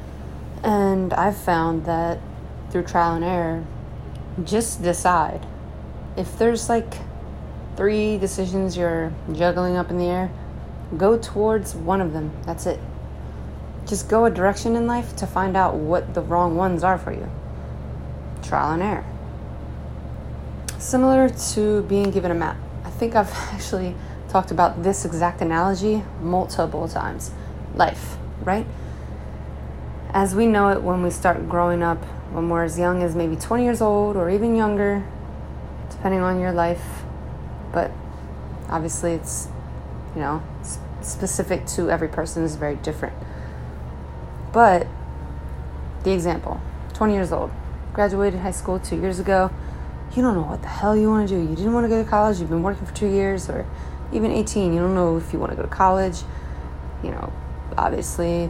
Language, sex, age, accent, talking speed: English, female, 20-39, American, 160 wpm